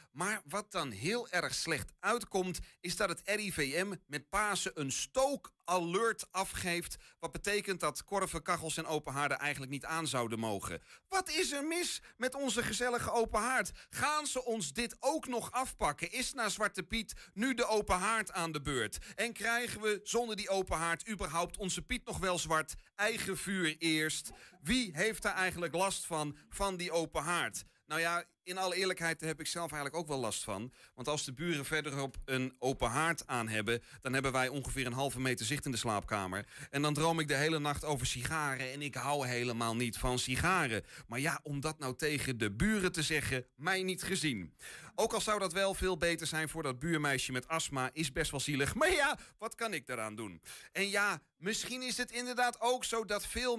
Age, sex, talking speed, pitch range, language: 30-49, male, 195 wpm, 140-205 Hz, Dutch